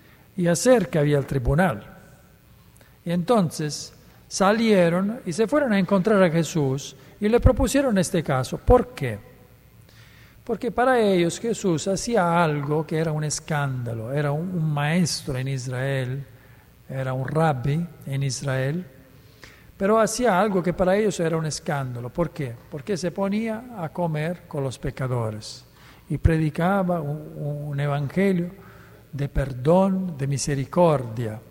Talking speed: 135 wpm